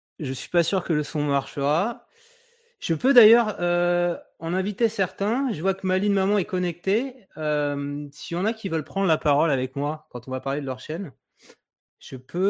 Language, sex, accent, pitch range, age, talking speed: French, male, French, 140-185 Hz, 30-49, 215 wpm